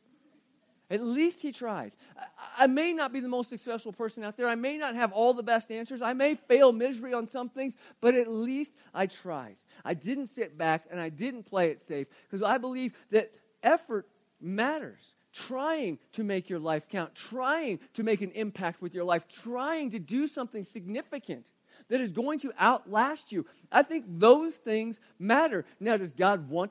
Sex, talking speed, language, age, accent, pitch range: male, 190 wpm, English, 40-59, American, 200-275 Hz